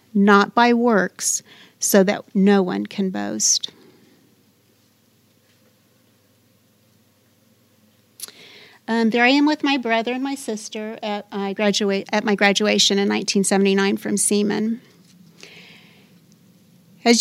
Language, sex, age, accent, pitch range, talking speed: English, female, 40-59, American, 195-225 Hz, 100 wpm